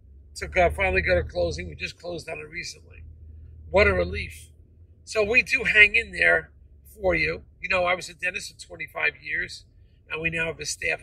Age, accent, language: 50-69, American, English